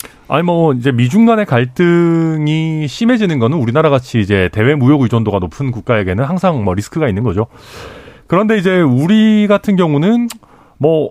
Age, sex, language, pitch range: 40-59, male, Korean, 105-165 Hz